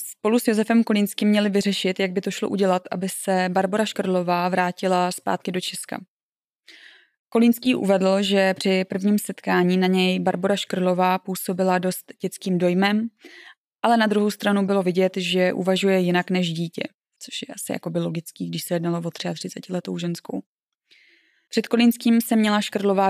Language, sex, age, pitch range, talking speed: Czech, female, 20-39, 185-205 Hz, 160 wpm